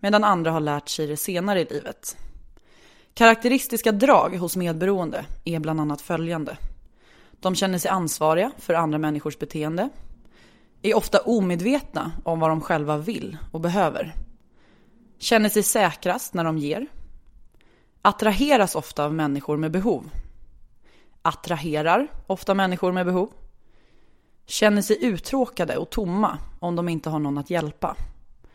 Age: 20-39